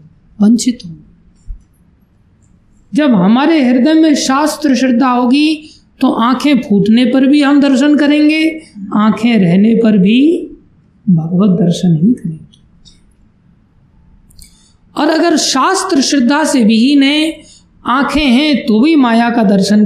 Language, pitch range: Hindi, 185-260 Hz